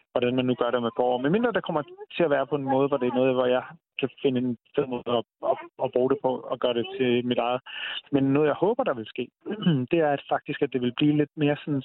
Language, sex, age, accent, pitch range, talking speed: Danish, male, 30-49, native, 135-155 Hz, 290 wpm